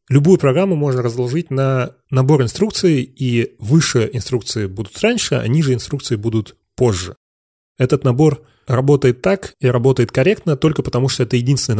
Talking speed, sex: 145 wpm, male